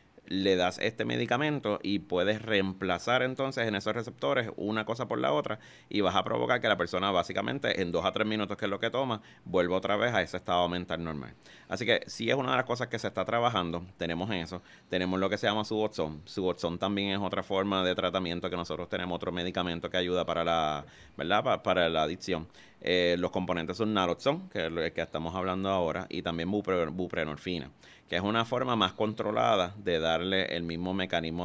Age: 30-49